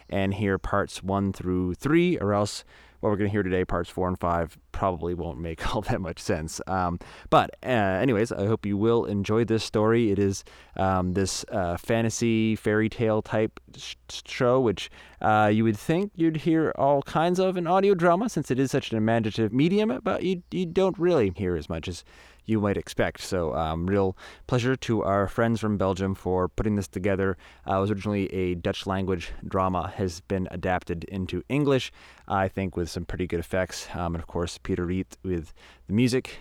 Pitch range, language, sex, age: 95-125 Hz, English, male, 20-39